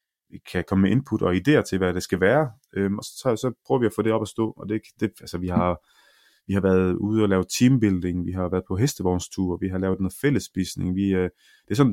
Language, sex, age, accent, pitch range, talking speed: Danish, male, 30-49, native, 95-115 Hz, 255 wpm